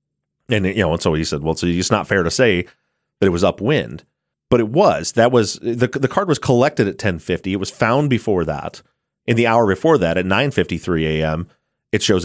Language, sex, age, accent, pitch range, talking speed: English, male, 30-49, American, 85-120 Hz, 220 wpm